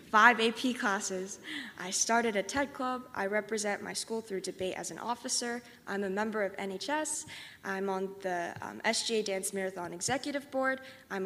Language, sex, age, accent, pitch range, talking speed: English, female, 10-29, American, 195-240 Hz, 170 wpm